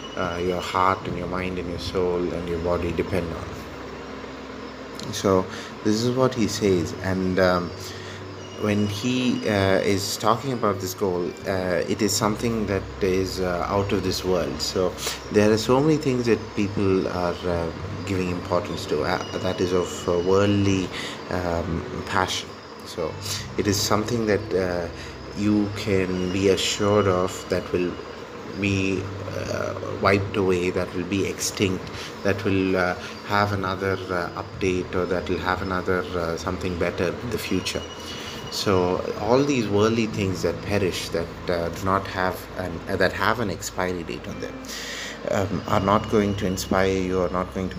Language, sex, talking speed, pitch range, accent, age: English, male, 165 wpm, 90-100 Hz, Indian, 30-49